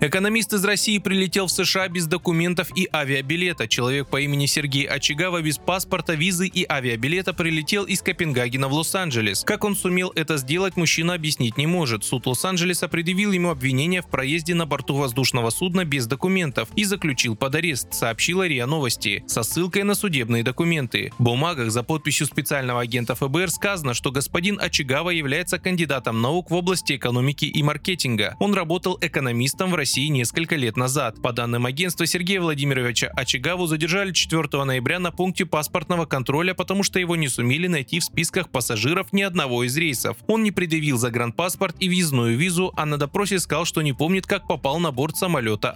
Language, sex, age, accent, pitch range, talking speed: Russian, male, 20-39, native, 130-180 Hz, 170 wpm